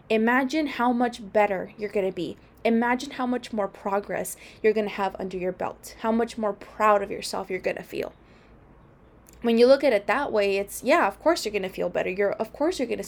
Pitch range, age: 200-235 Hz, 20-39